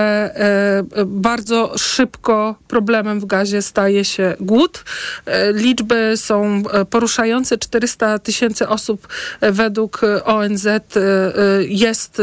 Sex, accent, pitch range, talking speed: male, native, 200-225 Hz, 85 wpm